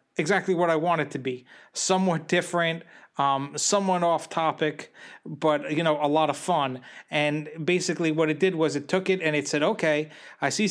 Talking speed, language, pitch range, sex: 195 wpm, English, 145-170 Hz, male